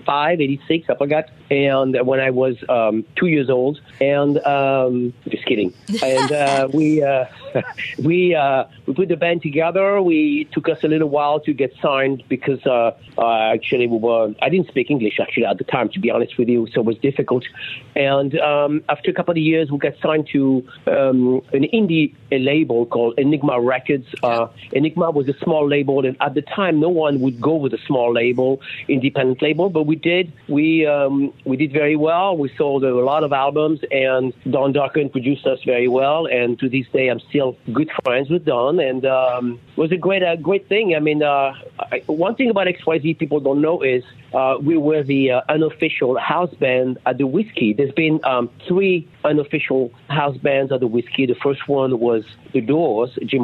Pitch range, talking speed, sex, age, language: 125-155 Hz, 205 wpm, male, 50-69, English